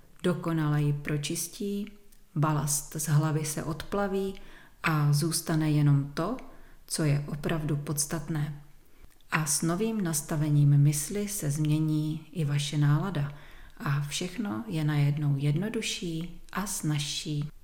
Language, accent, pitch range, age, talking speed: Czech, native, 150-180 Hz, 30-49, 110 wpm